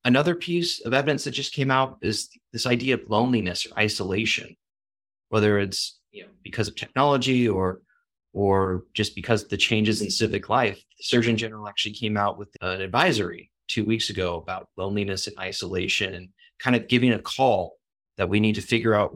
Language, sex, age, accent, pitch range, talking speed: English, male, 30-49, American, 100-115 Hz, 190 wpm